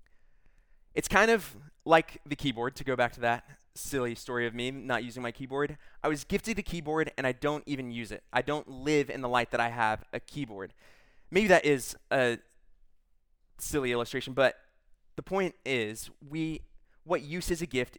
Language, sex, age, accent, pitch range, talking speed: English, male, 20-39, American, 115-150 Hz, 190 wpm